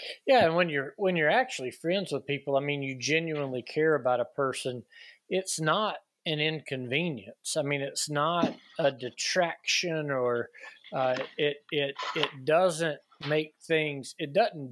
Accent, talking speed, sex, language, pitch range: American, 155 wpm, male, English, 130-160 Hz